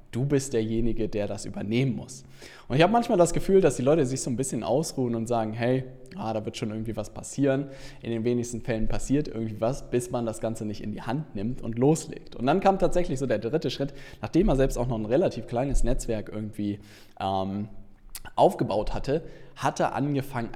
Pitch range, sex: 110-140 Hz, male